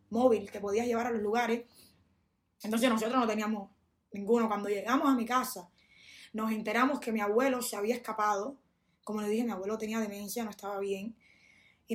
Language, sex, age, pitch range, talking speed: English, female, 20-39, 210-255 Hz, 180 wpm